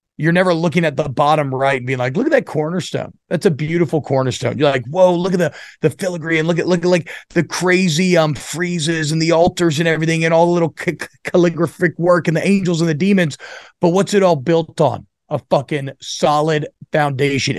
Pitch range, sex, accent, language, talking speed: 150-180 Hz, male, American, English, 220 wpm